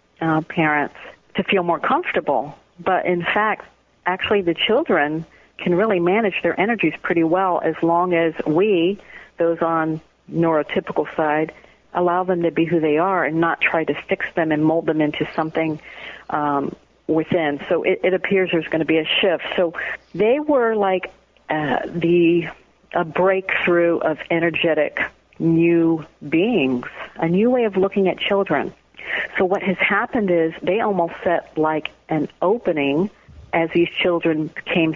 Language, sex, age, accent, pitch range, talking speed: English, female, 50-69, American, 160-185 Hz, 155 wpm